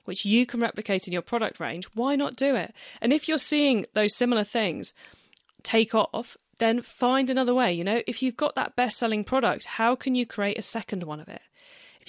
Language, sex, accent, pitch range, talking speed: English, female, British, 190-260 Hz, 215 wpm